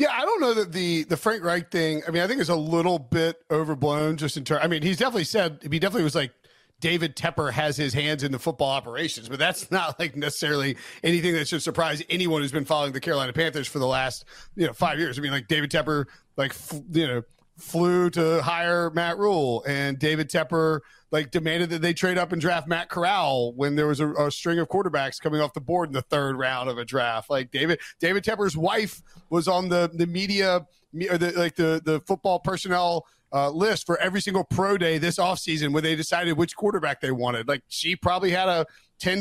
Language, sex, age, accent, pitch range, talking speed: English, male, 40-59, American, 150-180 Hz, 235 wpm